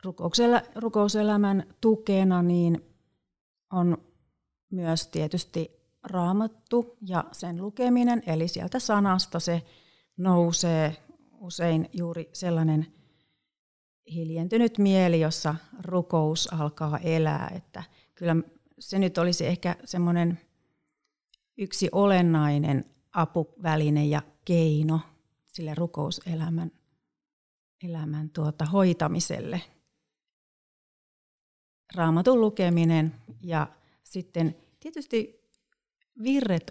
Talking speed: 75 wpm